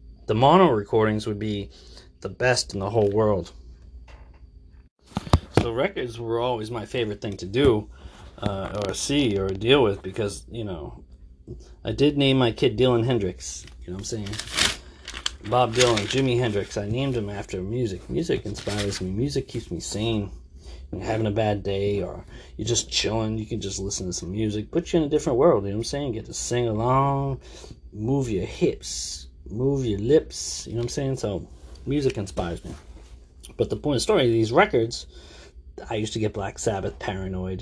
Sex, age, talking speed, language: male, 30-49, 190 wpm, English